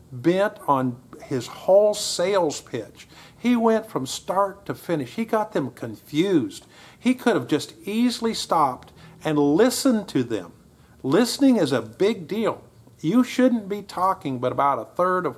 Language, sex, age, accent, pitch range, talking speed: English, male, 50-69, American, 135-190 Hz, 155 wpm